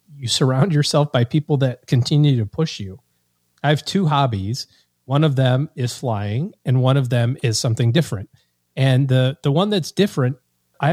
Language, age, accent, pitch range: English, 30-49, American, 115-145 Hz